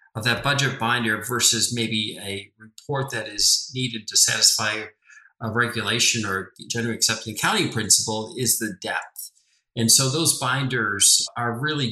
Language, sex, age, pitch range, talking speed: English, male, 40-59, 110-125 Hz, 145 wpm